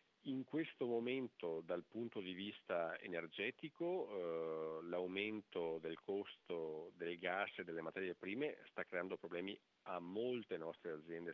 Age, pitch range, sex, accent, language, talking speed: 50-69, 85-110 Hz, male, Italian, French, 130 wpm